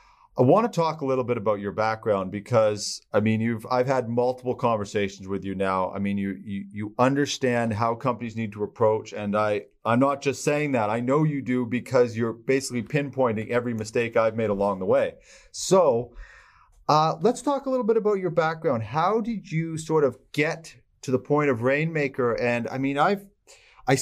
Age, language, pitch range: 40-59, English, 110-145 Hz